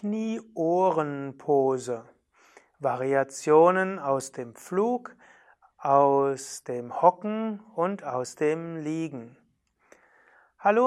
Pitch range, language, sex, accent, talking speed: 145-185 Hz, German, male, German, 70 wpm